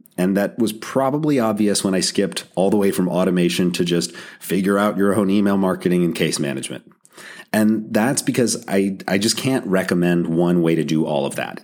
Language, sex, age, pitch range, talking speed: English, male, 30-49, 85-110 Hz, 200 wpm